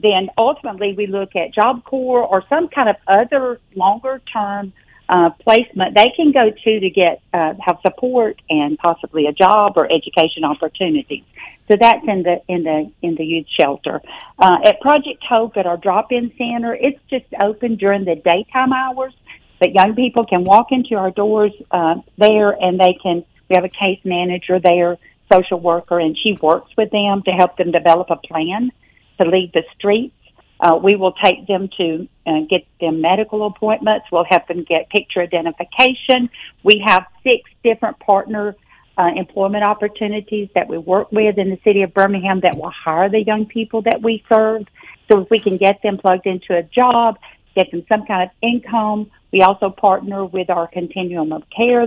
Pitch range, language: 175-220 Hz, English